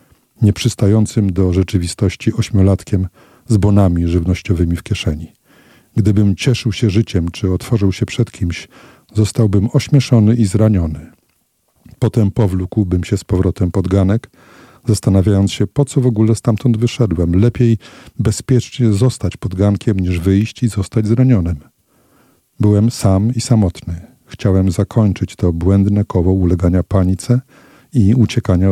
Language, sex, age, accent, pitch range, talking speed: Polish, male, 50-69, native, 95-115 Hz, 125 wpm